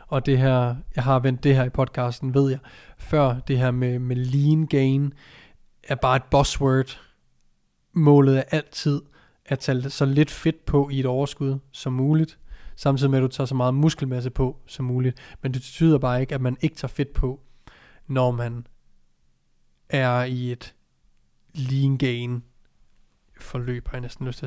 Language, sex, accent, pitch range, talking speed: Danish, male, native, 125-150 Hz, 175 wpm